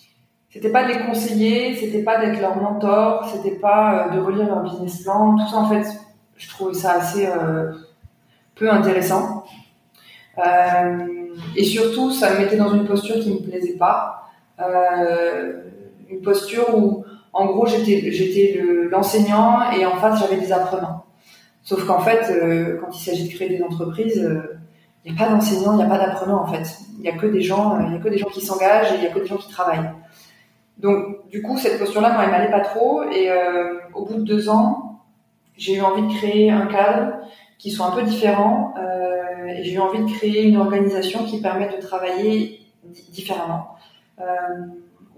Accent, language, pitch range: French, French, 180-210 Hz